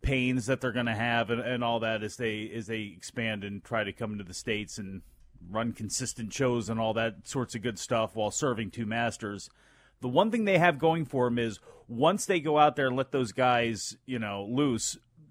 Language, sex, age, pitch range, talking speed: English, male, 30-49, 115-150 Hz, 225 wpm